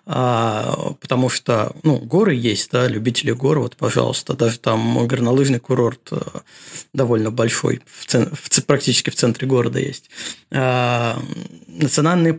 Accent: native